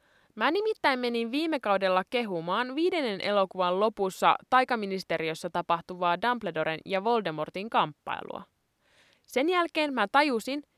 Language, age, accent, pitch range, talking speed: Finnish, 20-39, native, 180-270 Hz, 105 wpm